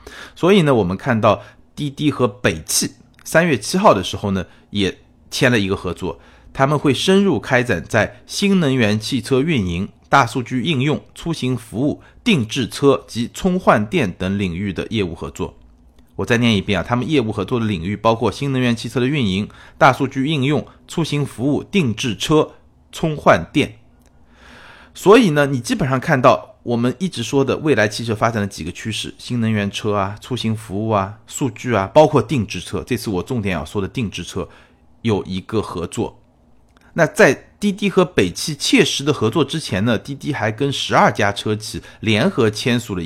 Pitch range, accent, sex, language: 95-135 Hz, native, male, Chinese